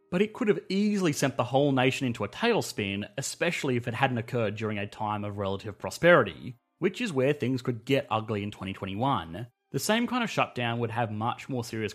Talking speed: 210 wpm